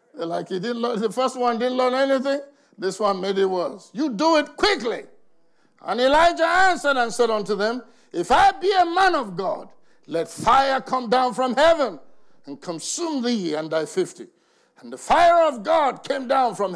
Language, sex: English, male